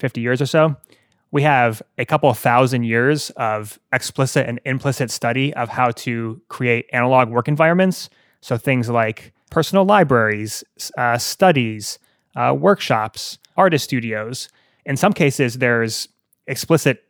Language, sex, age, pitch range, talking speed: English, male, 20-39, 115-140 Hz, 135 wpm